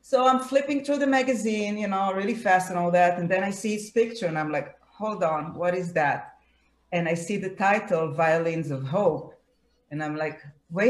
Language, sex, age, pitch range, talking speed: Hebrew, female, 40-59, 170-220 Hz, 205 wpm